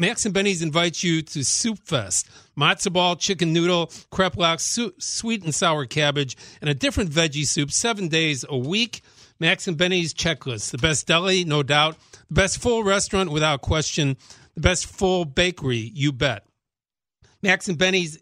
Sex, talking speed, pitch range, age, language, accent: male, 170 wpm, 135-180 Hz, 50-69, English, American